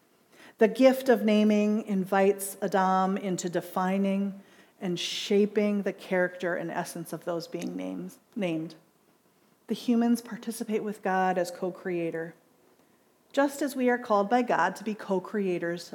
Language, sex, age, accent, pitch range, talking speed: English, female, 40-59, American, 190-245 Hz, 130 wpm